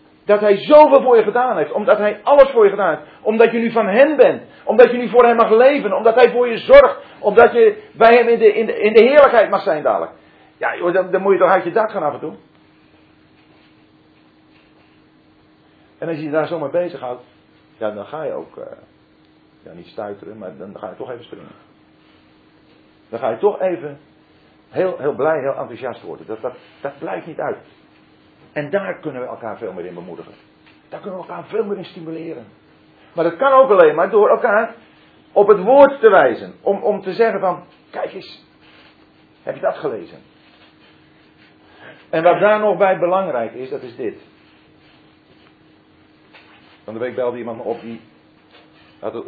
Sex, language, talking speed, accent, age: male, Danish, 195 wpm, Dutch, 40-59